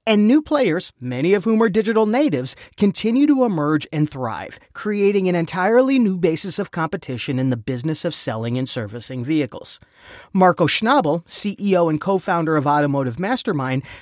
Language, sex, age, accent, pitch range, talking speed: English, male, 30-49, American, 140-215 Hz, 160 wpm